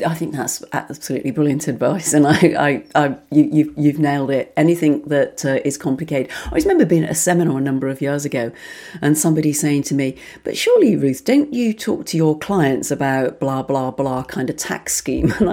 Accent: British